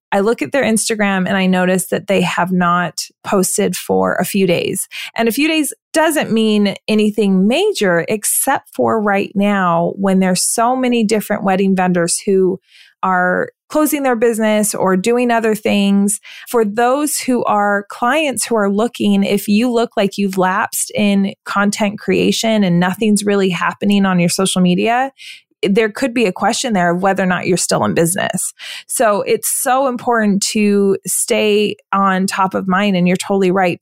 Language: English